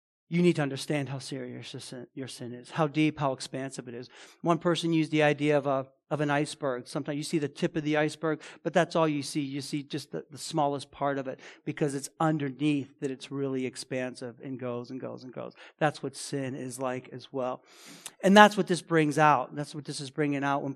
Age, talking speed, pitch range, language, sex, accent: 40-59, 235 wpm, 145-190 Hz, English, male, American